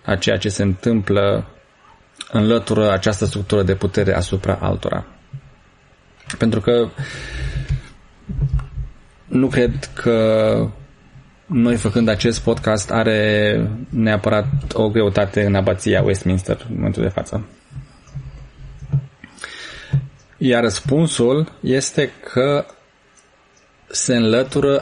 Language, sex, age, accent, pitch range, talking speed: Romanian, male, 20-39, native, 100-125 Hz, 90 wpm